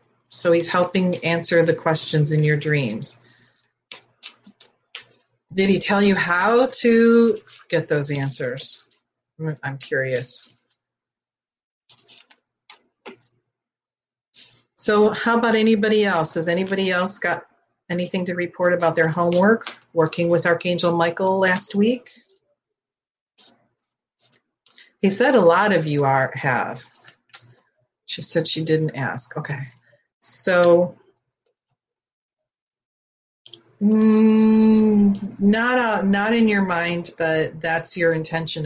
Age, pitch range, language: 40-59, 150-195 Hz, English